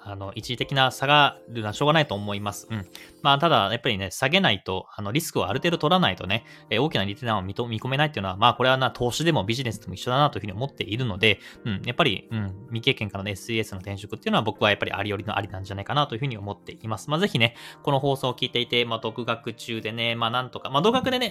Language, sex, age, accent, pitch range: Japanese, male, 20-39, native, 100-130 Hz